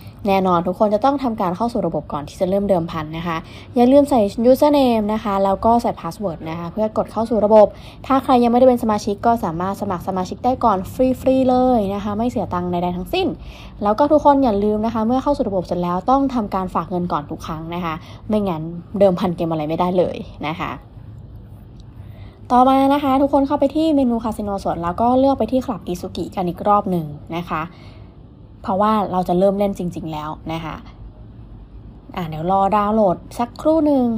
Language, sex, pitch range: Thai, female, 160-220 Hz